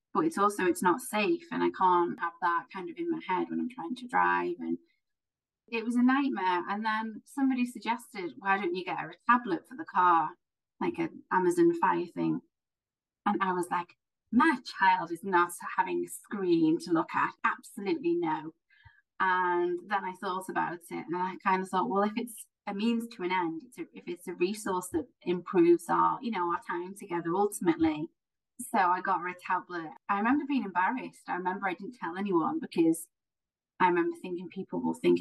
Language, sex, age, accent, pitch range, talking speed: English, female, 30-49, British, 175-275 Hz, 195 wpm